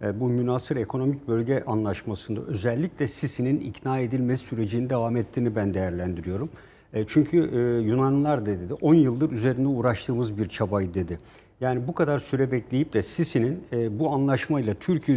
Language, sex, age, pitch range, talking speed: Turkish, male, 60-79, 115-150 Hz, 135 wpm